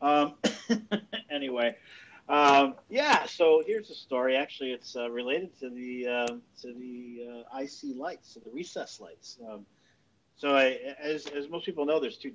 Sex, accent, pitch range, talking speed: male, American, 110-140 Hz, 165 wpm